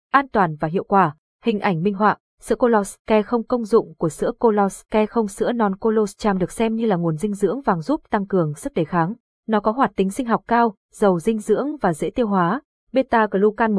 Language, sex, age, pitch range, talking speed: Vietnamese, female, 20-39, 190-235 Hz, 220 wpm